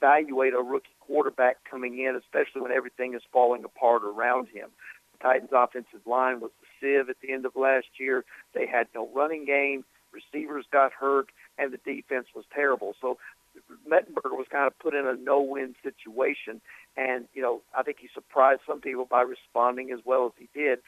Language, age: English, 60-79